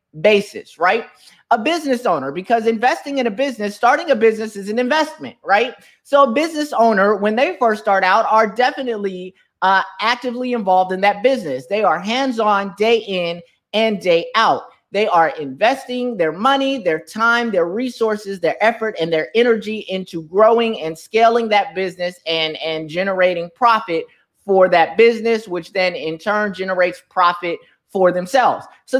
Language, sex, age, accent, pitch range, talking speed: English, male, 30-49, American, 180-240 Hz, 160 wpm